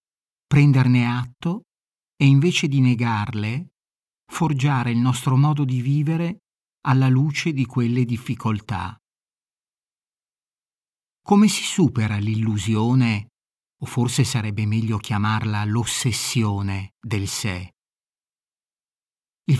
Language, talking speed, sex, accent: Italian, 90 wpm, male, native